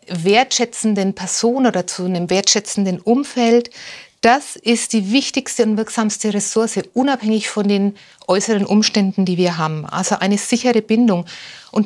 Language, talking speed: German, 135 wpm